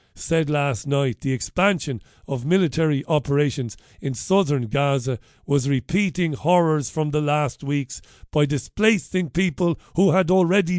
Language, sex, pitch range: English, male, 130-165 Hz